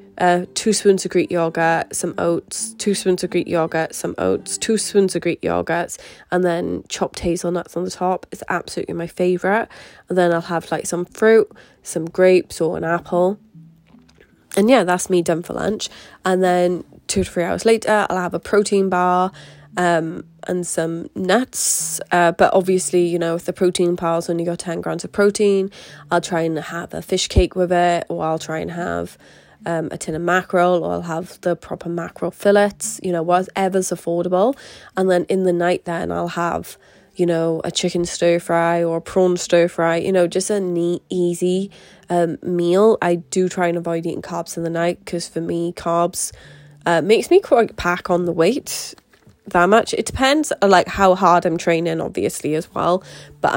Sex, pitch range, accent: female, 170-185 Hz, British